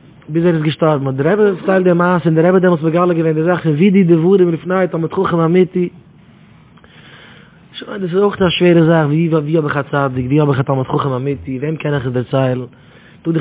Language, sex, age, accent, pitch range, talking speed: English, male, 20-39, Dutch, 135-170 Hz, 100 wpm